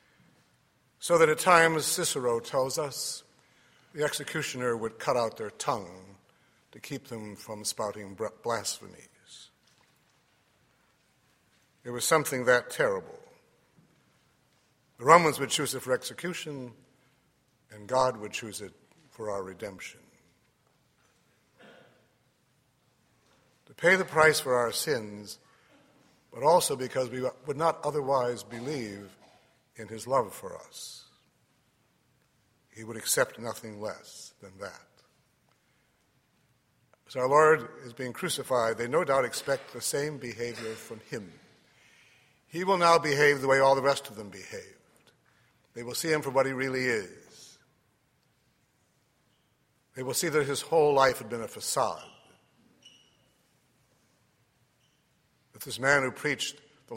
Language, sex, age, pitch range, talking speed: English, male, 60-79, 115-150 Hz, 125 wpm